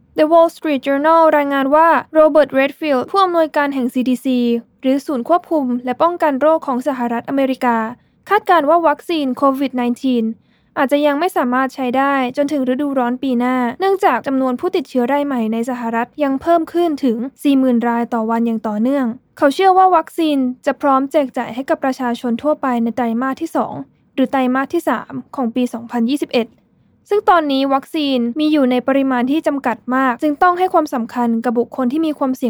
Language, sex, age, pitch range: Thai, female, 10-29, 245-305 Hz